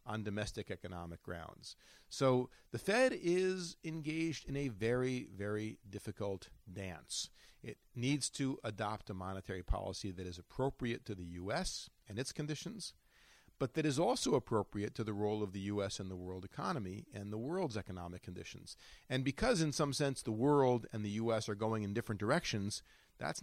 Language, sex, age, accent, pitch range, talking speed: English, male, 40-59, American, 100-135 Hz, 170 wpm